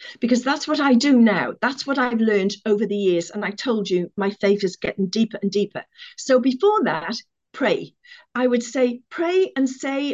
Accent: British